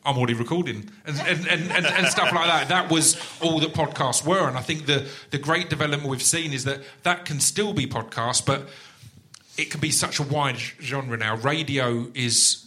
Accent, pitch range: British, 115-145 Hz